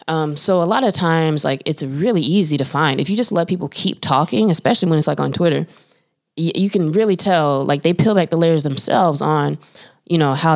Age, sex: 20-39, female